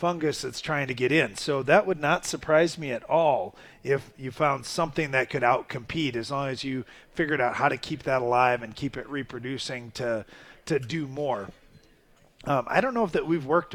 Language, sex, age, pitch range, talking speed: English, male, 40-59, 125-160 Hz, 210 wpm